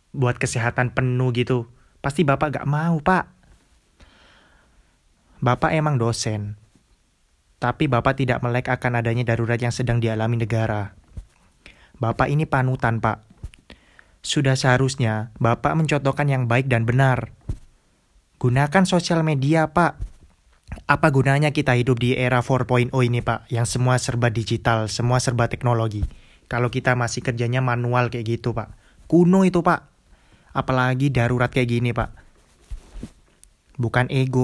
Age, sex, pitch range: 20-39, male, 115-135 Hz